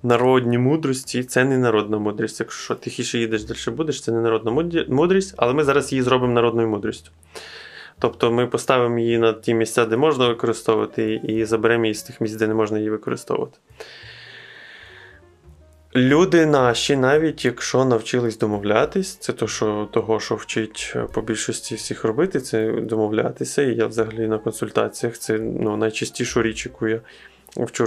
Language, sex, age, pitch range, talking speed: Ukrainian, male, 20-39, 110-125 Hz, 160 wpm